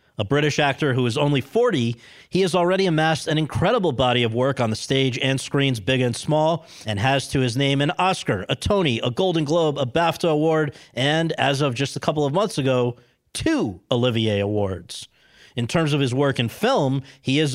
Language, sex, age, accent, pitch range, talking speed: English, male, 40-59, American, 125-165 Hz, 205 wpm